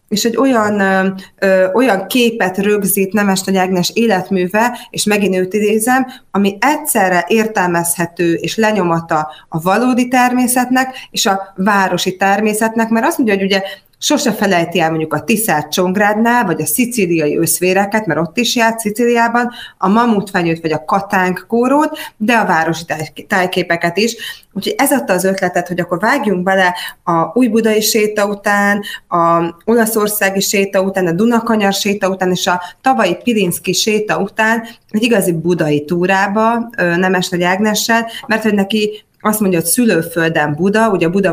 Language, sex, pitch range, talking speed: Hungarian, female, 180-225 Hz, 150 wpm